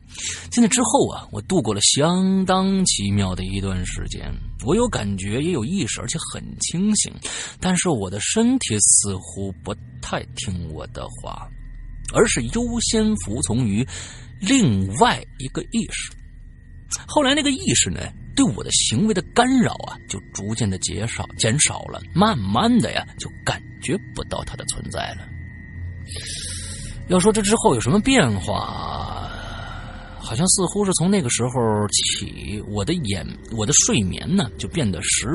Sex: male